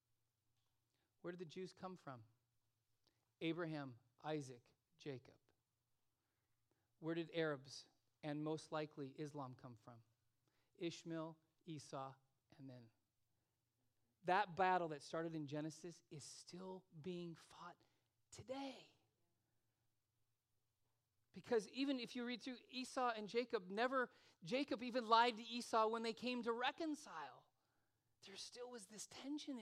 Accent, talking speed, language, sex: American, 120 wpm, English, male